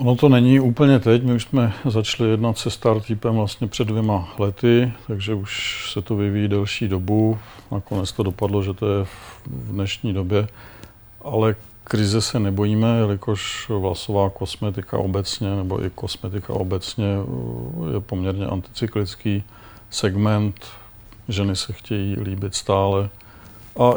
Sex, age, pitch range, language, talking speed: male, 50-69, 95-110 Hz, Czech, 135 wpm